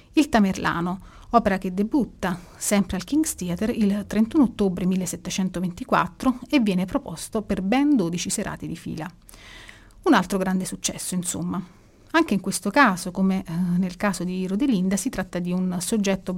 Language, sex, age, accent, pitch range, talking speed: Italian, female, 30-49, native, 180-220 Hz, 150 wpm